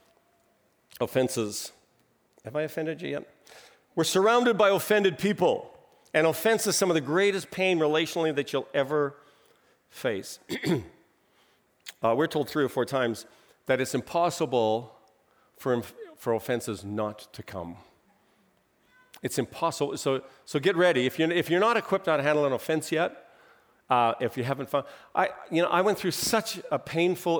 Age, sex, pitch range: 50-69, male, 135-185 Hz